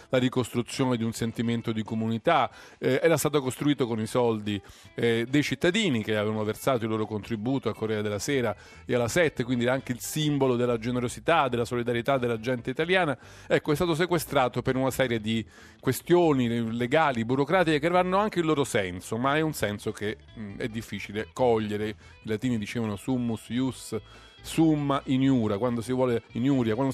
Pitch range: 105-135 Hz